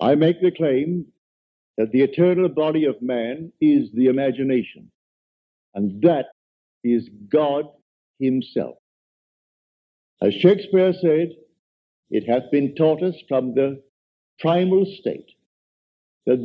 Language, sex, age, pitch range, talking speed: English, male, 60-79, 135-185 Hz, 115 wpm